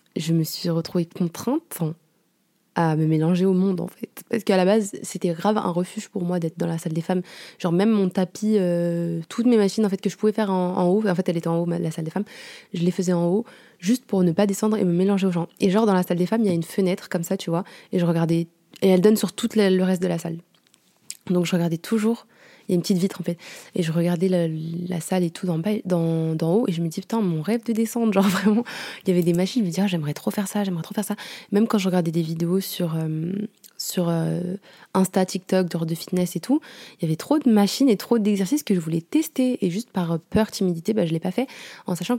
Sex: female